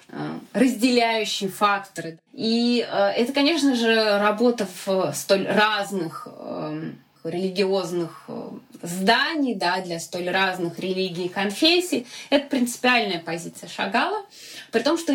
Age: 20-39